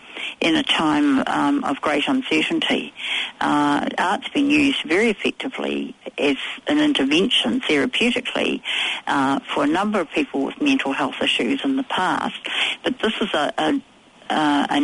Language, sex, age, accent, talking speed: English, female, 60-79, Australian, 145 wpm